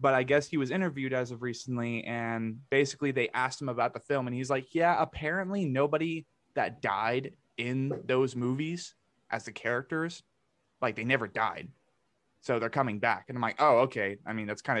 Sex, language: male, English